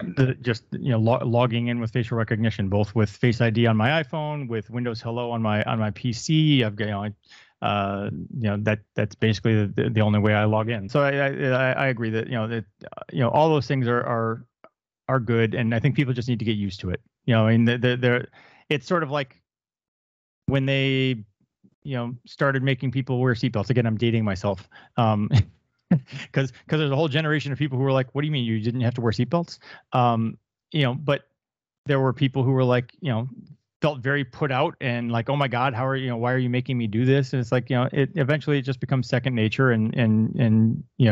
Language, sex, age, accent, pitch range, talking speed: English, male, 30-49, American, 110-135 Hz, 240 wpm